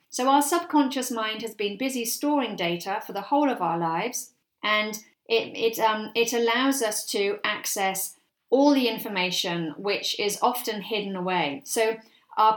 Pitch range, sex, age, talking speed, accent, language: 190-265 Hz, female, 40-59, 160 wpm, British, English